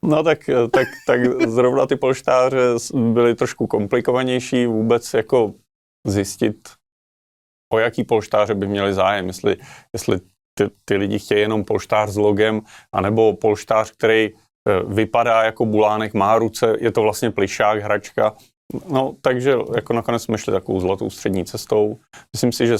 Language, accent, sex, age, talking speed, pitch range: Czech, native, male, 30-49, 145 wpm, 100-115 Hz